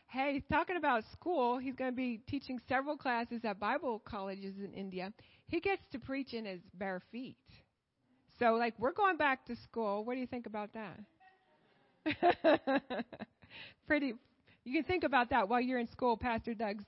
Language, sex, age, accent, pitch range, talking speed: English, female, 30-49, American, 205-275 Hz, 180 wpm